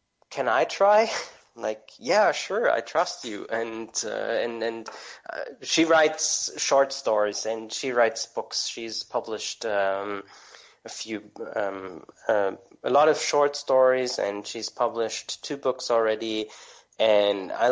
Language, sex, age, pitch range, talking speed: English, male, 20-39, 110-140 Hz, 140 wpm